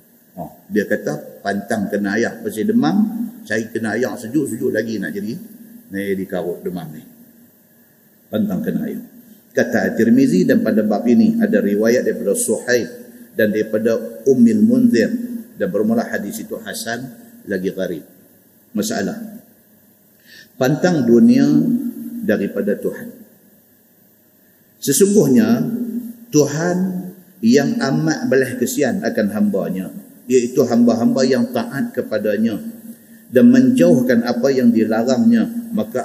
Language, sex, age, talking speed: Malay, male, 50-69, 105 wpm